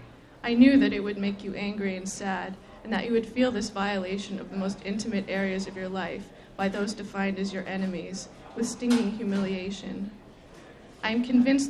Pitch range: 195-225 Hz